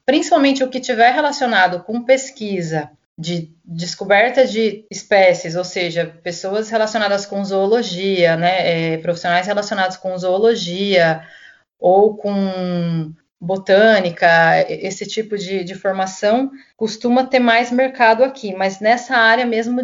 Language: Portuguese